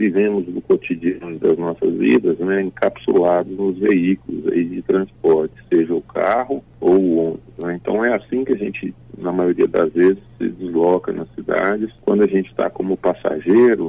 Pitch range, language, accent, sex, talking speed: 90-125 Hz, Portuguese, Brazilian, male, 175 wpm